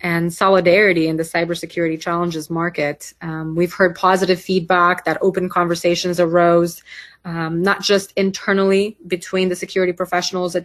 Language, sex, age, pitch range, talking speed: English, female, 30-49, 165-185 Hz, 140 wpm